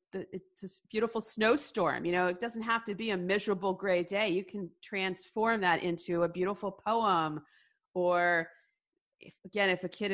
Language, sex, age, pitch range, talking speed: English, female, 30-49, 180-230 Hz, 165 wpm